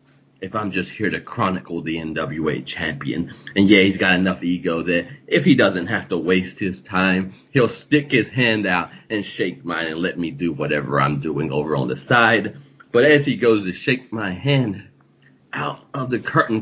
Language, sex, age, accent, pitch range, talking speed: English, male, 40-59, American, 90-110 Hz, 200 wpm